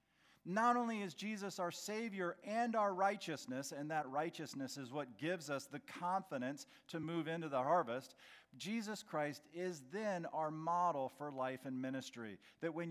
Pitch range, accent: 155-200 Hz, American